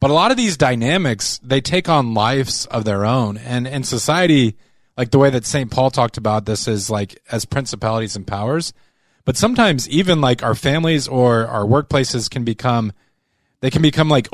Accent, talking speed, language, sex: American, 195 wpm, English, male